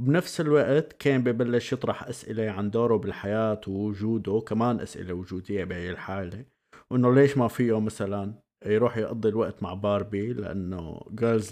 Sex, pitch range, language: male, 105-125 Hz, Arabic